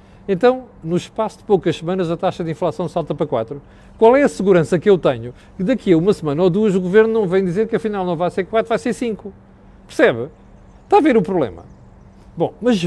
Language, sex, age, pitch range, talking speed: Portuguese, male, 40-59, 150-215 Hz, 230 wpm